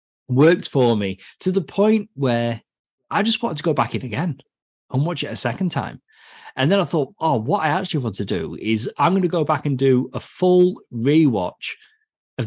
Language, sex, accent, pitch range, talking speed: English, male, British, 110-150 Hz, 210 wpm